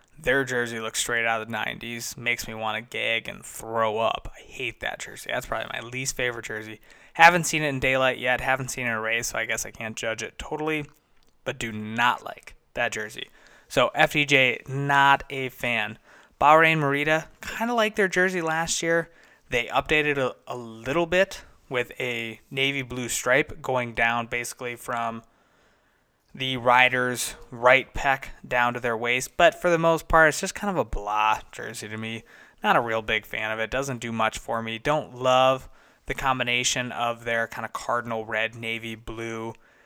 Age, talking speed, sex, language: 20-39, 190 wpm, male, English